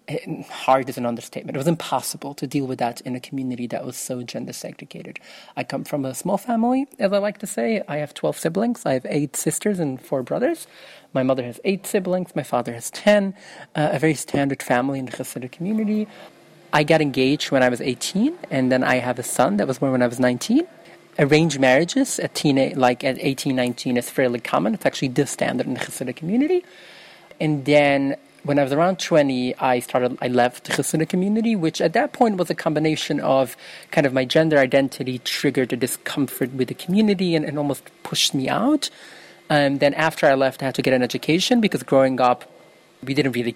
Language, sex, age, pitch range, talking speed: Hebrew, male, 30-49, 130-170 Hz, 210 wpm